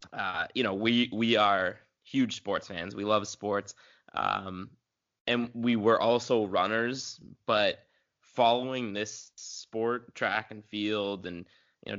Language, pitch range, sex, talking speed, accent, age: English, 105-120 Hz, male, 140 wpm, American, 20-39